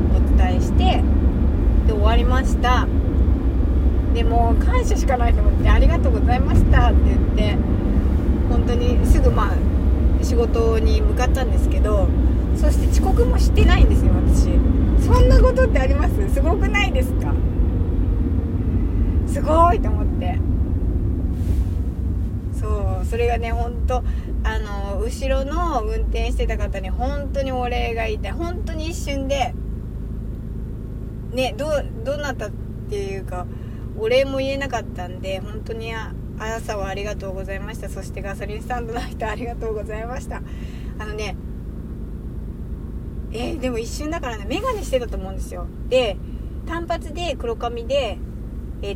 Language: Japanese